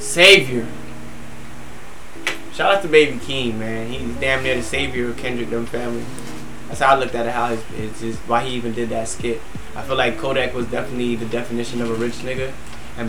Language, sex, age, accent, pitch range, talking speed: English, male, 20-39, American, 115-125 Hz, 205 wpm